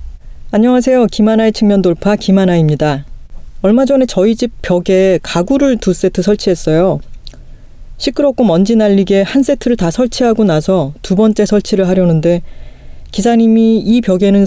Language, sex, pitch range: Korean, female, 170-215 Hz